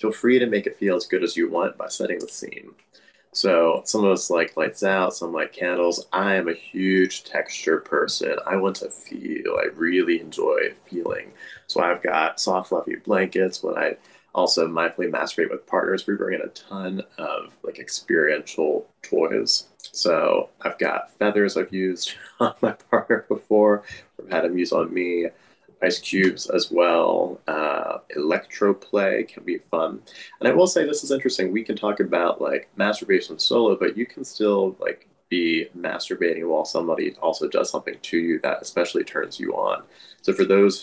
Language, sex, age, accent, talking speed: English, male, 20-39, American, 180 wpm